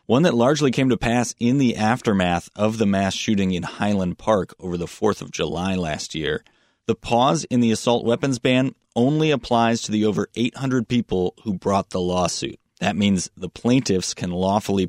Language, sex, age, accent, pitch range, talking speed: English, male, 30-49, American, 95-115 Hz, 190 wpm